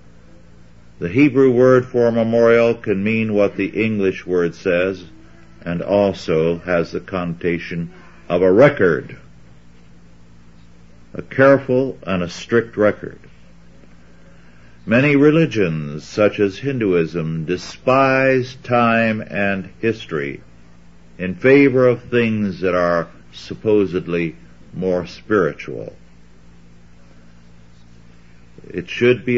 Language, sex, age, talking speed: English, male, 60-79, 95 wpm